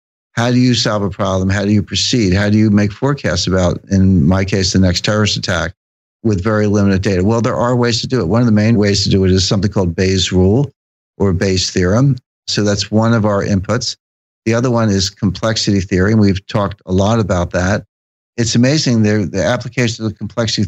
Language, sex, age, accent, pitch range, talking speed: English, male, 60-79, American, 95-115 Hz, 220 wpm